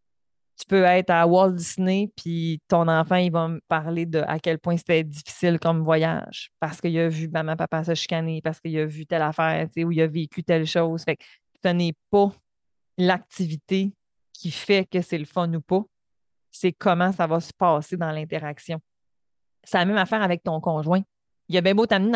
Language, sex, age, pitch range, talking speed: French, female, 20-39, 160-190 Hz, 200 wpm